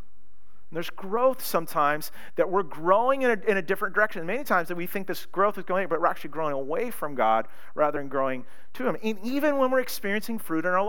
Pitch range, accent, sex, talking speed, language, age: 160-230 Hz, American, male, 225 wpm, English, 40-59